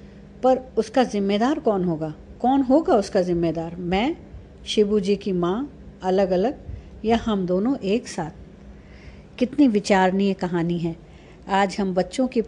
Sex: female